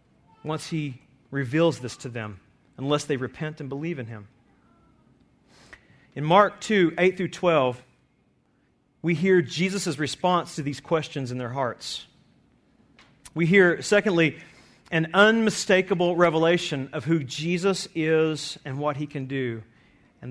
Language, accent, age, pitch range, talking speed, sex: English, American, 40-59, 140-200 Hz, 135 wpm, male